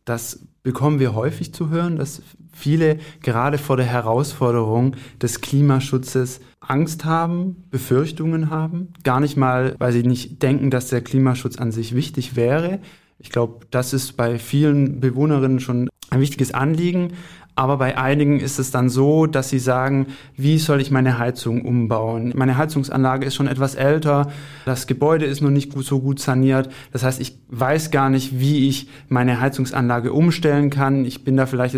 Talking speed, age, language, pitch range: 170 wpm, 20-39, German, 130-150 Hz